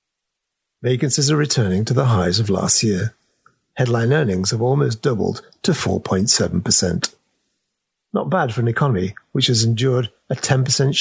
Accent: British